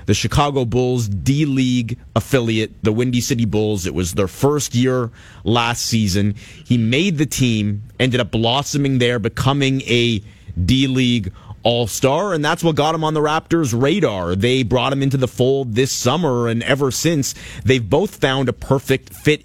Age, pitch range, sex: 30-49, 115-140 Hz, male